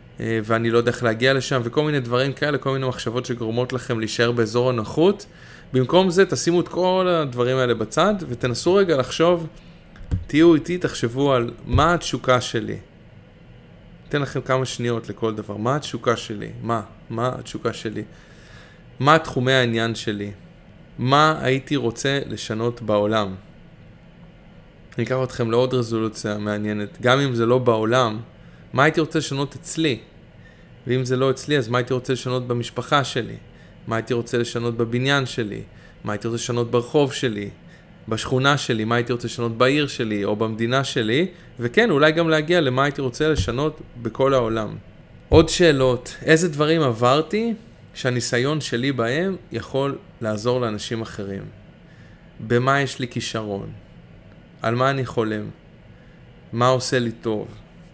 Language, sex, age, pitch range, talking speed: Hebrew, male, 20-39, 115-140 Hz, 145 wpm